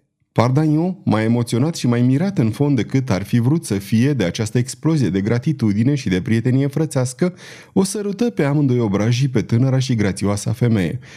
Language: Romanian